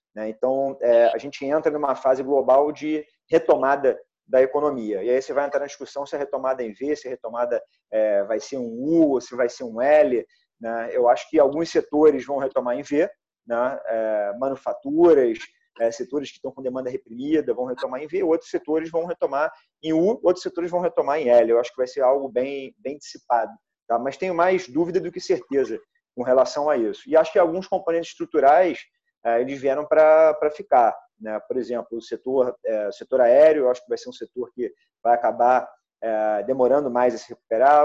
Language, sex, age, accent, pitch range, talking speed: Portuguese, male, 30-49, Brazilian, 125-180 Hz, 195 wpm